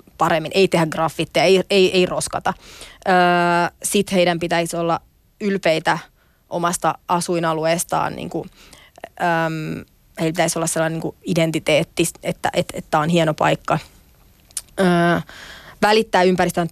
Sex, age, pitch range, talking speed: female, 30-49, 165-190 Hz, 115 wpm